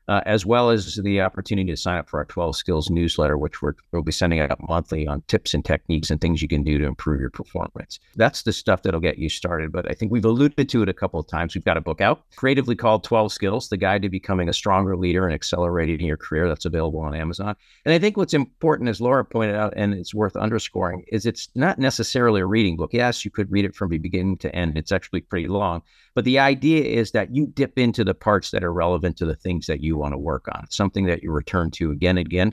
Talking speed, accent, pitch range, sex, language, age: 255 wpm, American, 85-110 Hz, male, English, 50-69